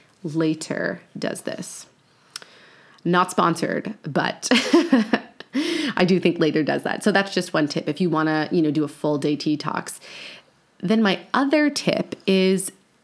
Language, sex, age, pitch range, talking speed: English, female, 30-49, 165-210 Hz, 150 wpm